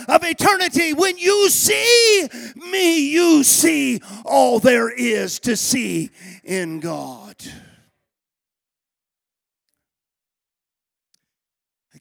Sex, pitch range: male, 170-240 Hz